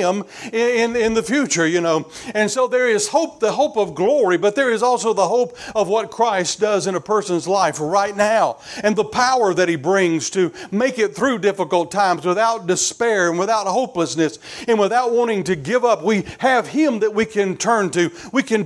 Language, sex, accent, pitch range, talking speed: English, male, American, 195-240 Hz, 205 wpm